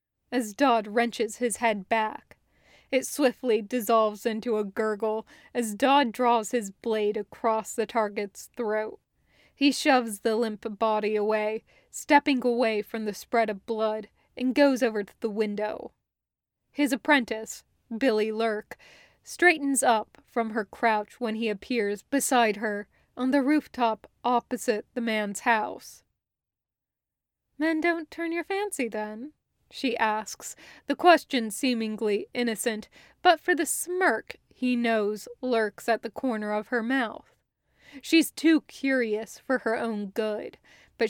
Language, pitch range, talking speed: English, 215-255 Hz, 135 wpm